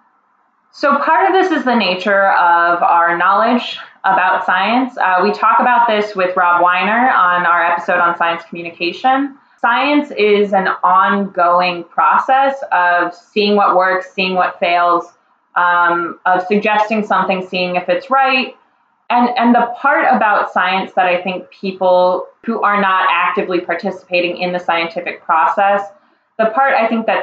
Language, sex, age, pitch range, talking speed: English, female, 20-39, 180-240 Hz, 155 wpm